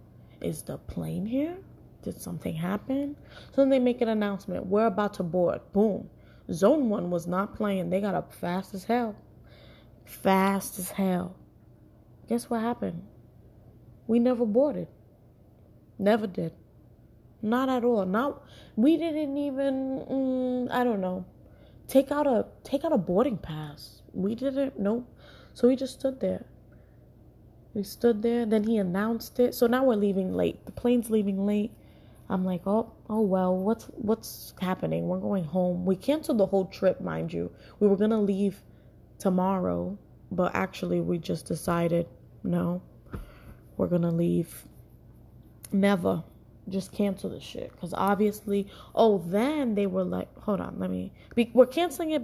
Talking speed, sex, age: 155 wpm, female, 20-39